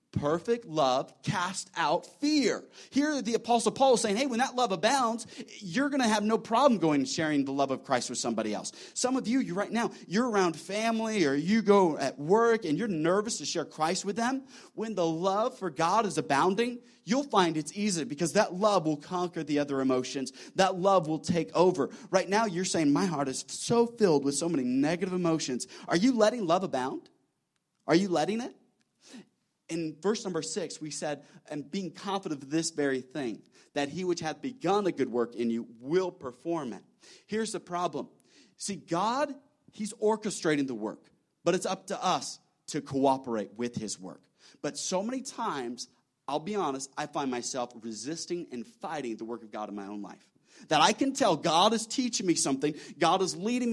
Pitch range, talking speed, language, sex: 145-220 Hz, 200 wpm, English, male